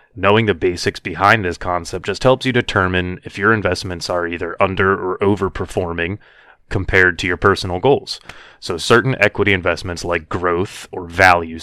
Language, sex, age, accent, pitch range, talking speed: English, male, 30-49, American, 90-105 Hz, 160 wpm